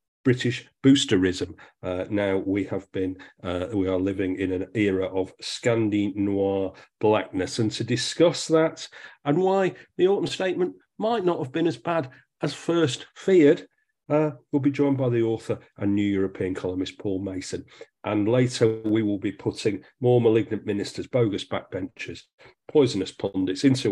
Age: 40-59